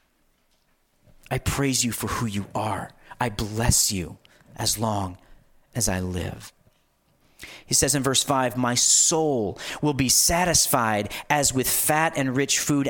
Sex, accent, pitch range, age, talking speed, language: male, American, 140-210 Hz, 40-59, 145 wpm, English